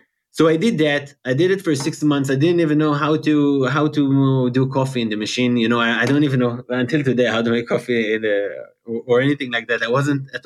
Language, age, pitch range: English, 20-39, 115-140 Hz